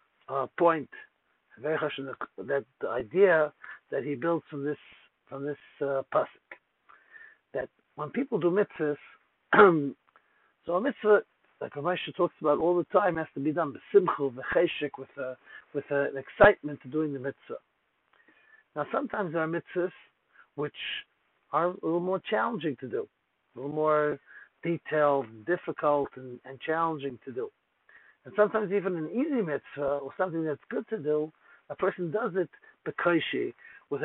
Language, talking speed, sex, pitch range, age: English, 155 wpm, male, 145-195 Hz, 60-79